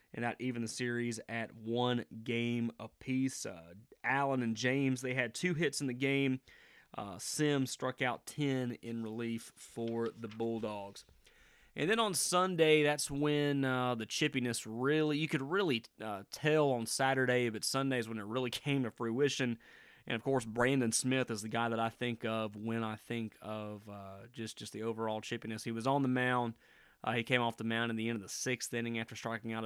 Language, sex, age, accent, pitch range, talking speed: English, male, 30-49, American, 115-130 Hz, 200 wpm